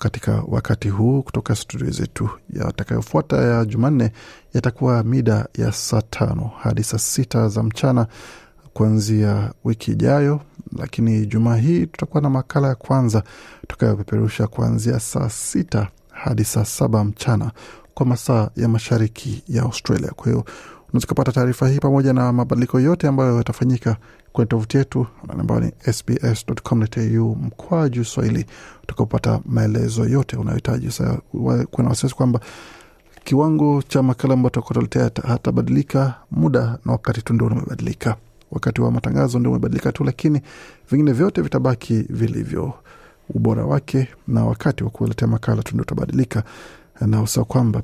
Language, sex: Swahili, male